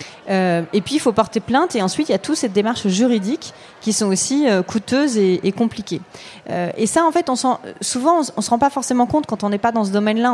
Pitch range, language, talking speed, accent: 195-245 Hz, French, 260 wpm, French